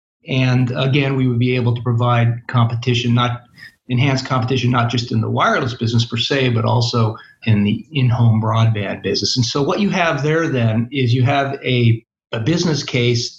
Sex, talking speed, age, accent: male, 185 wpm, 40-59, American